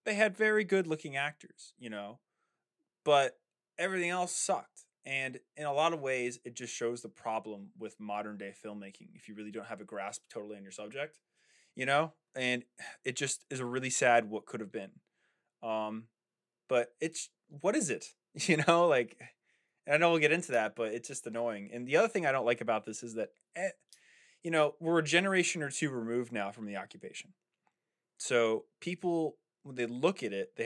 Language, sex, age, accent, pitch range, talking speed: English, male, 20-39, American, 110-160 Hz, 200 wpm